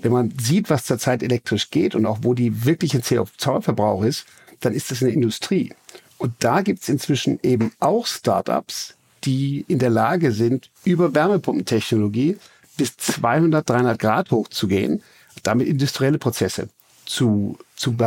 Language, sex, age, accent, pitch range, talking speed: German, male, 60-79, German, 120-155 Hz, 145 wpm